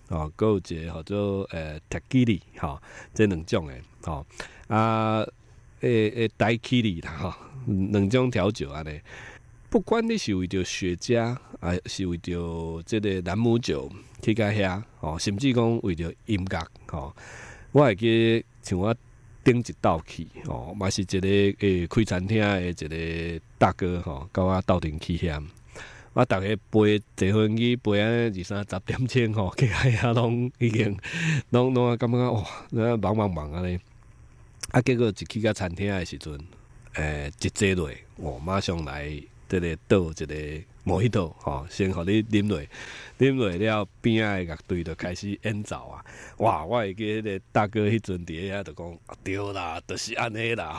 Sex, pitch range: male, 90-115 Hz